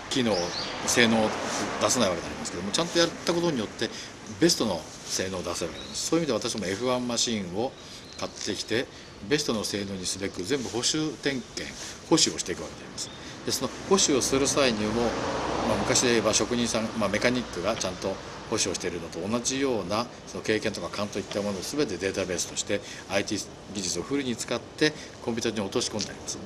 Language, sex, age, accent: Japanese, male, 50-69, native